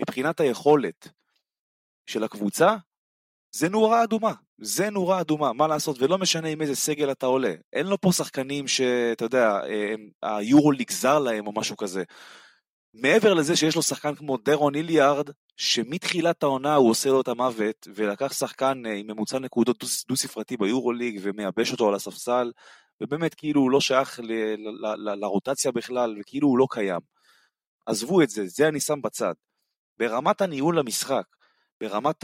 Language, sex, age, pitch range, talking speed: Hebrew, male, 20-39, 115-165 Hz, 155 wpm